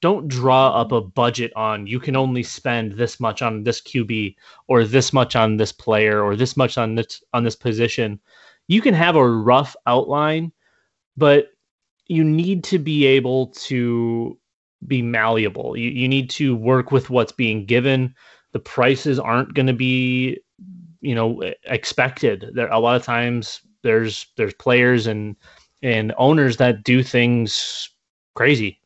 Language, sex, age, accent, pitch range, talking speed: English, male, 20-39, American, 115-135 Hz, 160 wpm